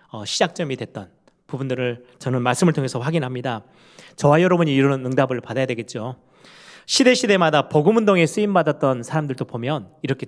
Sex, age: male, 30-49